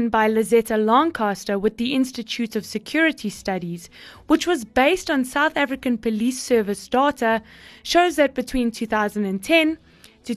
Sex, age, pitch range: female, 20-39, 215-280 Hz